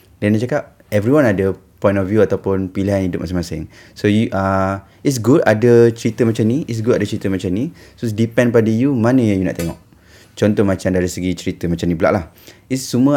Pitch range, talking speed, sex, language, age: 95-115 Hz, 215 wpm, male, Malay, 20-39